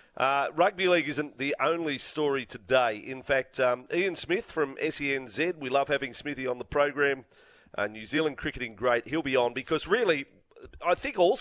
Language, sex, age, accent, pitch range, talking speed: English, male, 40-59, Australian, 130-165 Hz, 185 wpm